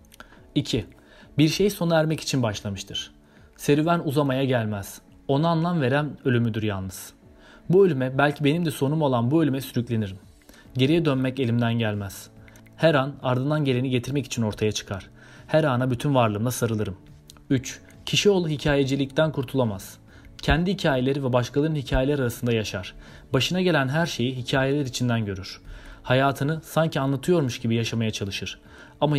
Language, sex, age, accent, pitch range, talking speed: Turkish, male, 30-49, native, 110-145 Hz, 140 wpm